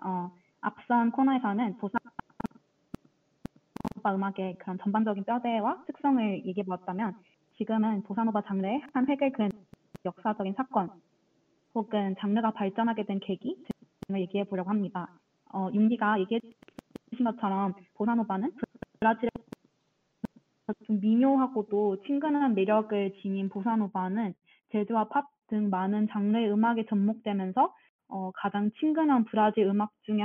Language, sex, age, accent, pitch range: Korean, female, 20-39, native, 195-235 Hz